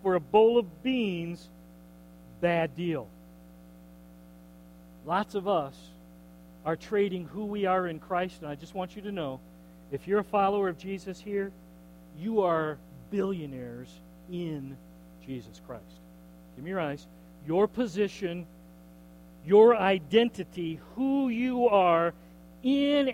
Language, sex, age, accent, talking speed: English, male, 50-69, American, 125 wpm